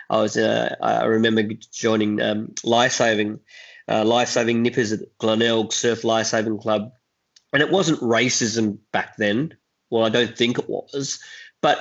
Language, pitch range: English, 110-130 Hz